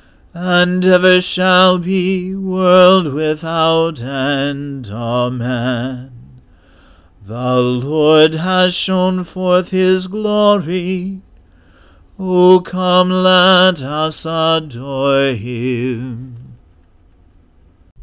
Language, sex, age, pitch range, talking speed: English, male, 40-59, 135-175 Hz, 70 wpm